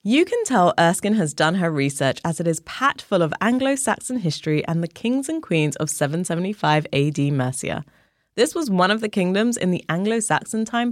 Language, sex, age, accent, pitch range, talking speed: English, female, 20-39, British, 145-215 Hz, 190 wpm